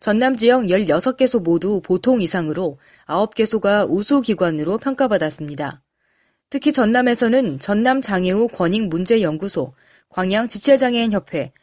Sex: female